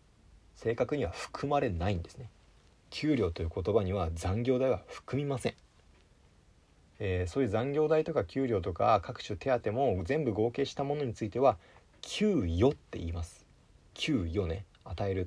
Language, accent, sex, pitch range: Japanese, native, male, 90-130 Hz